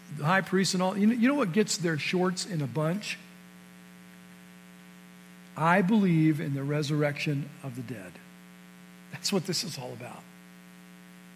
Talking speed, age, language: 155 wpm, 50-69, English